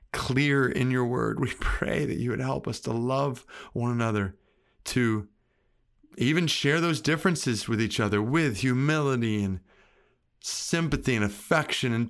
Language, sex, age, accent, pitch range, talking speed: English, male, 30-49, American, 105-140 Hz, 150 wpm